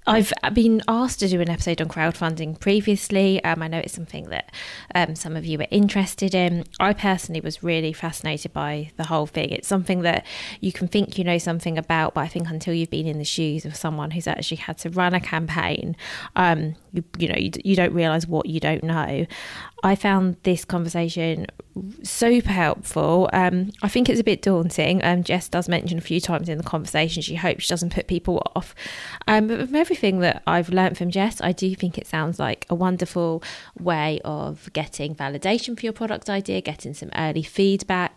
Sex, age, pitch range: female, 20-39, 160-185 Hz